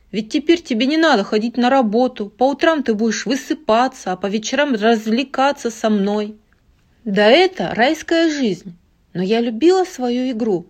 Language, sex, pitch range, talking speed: Russian, female, 185-260 Hz, 155 wpm